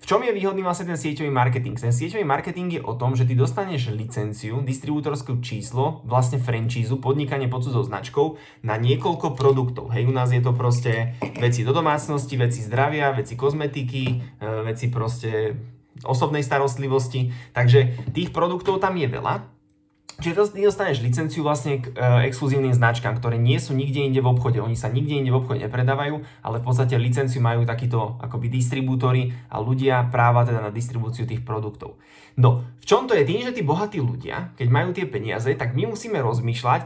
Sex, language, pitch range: male, Slovak, 120-135 Hz